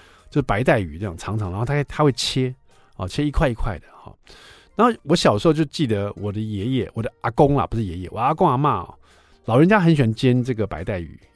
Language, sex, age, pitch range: Chinese, male, 50-69, 105-160 Hz